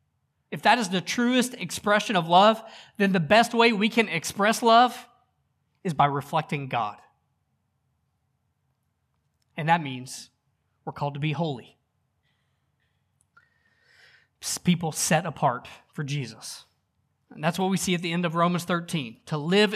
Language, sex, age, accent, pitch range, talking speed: English, male, 20-39, American, 150-200 Hz, 140 wpm